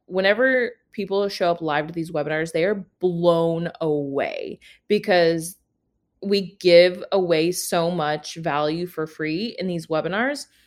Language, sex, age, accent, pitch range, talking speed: English, female, 20-39, American, 155-195 Hz, 135 wpm